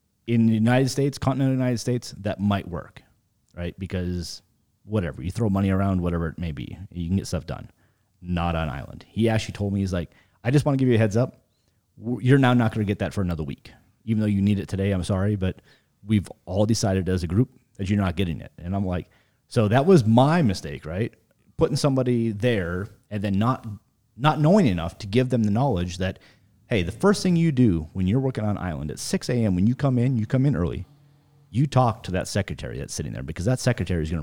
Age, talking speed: 30-49, 235 wpm